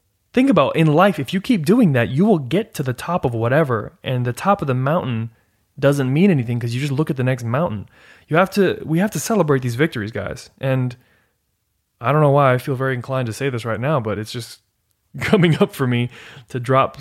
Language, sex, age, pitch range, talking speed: English, male, 20-39, 110-155 Hz, 235 wpm